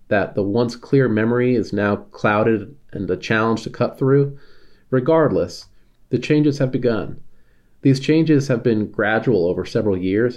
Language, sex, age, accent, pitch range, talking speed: English, male, 30-49, American, 105-140 Hz, 155 wpm